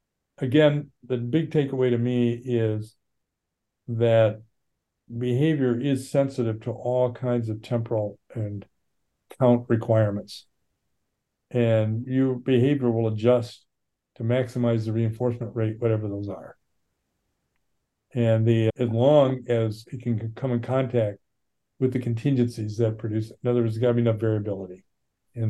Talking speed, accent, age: 135 wpm, American, 50-69